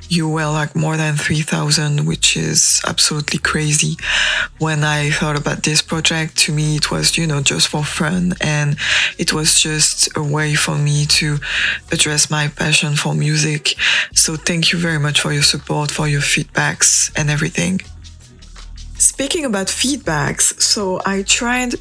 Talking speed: 160 wpm